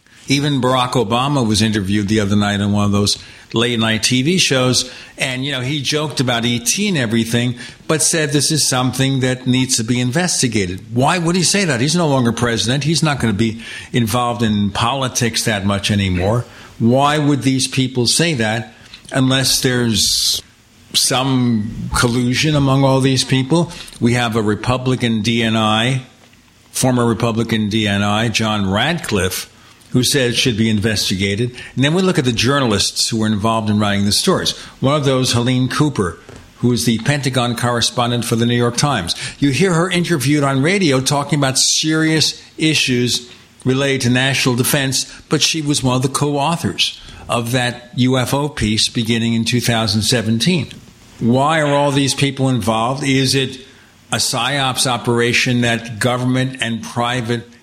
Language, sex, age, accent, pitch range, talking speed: English, male, 60-79, American, 115-135 Hz, 165 wpm